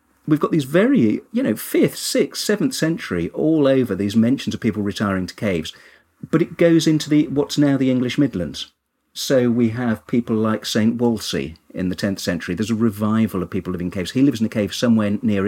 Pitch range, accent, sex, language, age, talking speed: 95-130 Hz, British, male, English, 40-59, 215 wpm